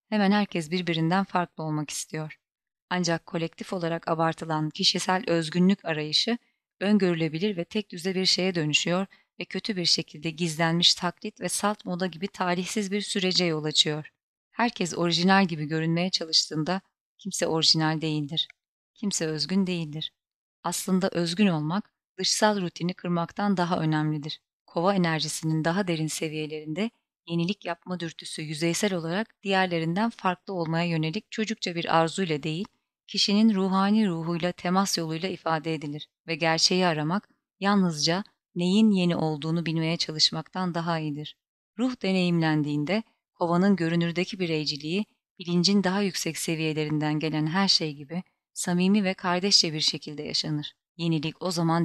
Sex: female